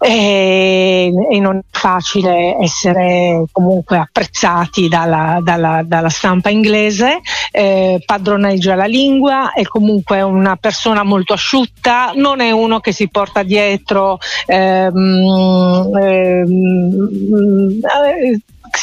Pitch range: 180-210 Hz